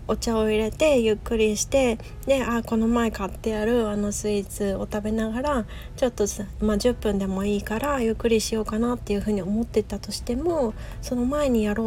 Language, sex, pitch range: Japanese, female, 210-245 Hz